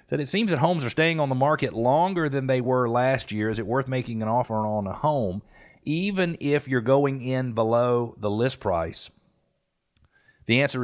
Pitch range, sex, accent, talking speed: 110-135 Hz, male, American, 200 wpm